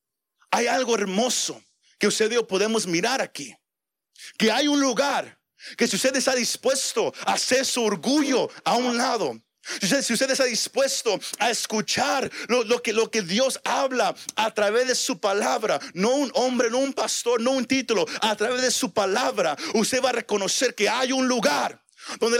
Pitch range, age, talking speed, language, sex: 195-250 Hz, 50-69, 180 wpm, Spanish, male